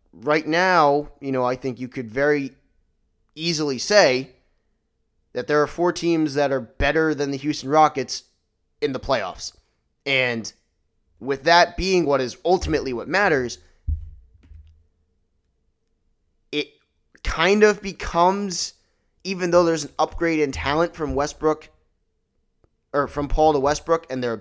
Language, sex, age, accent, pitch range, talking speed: English, male, 20-39, American, 120-155 Hz, 135 wpm